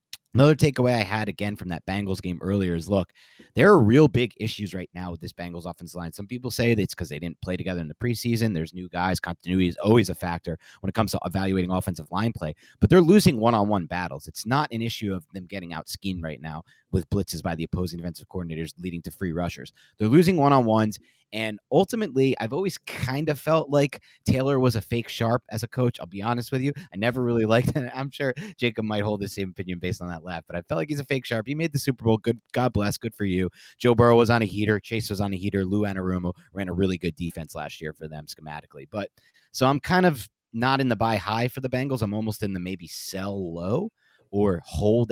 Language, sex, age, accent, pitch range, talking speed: English, male, 30-49, American, 90-120 Hz, 245 wpm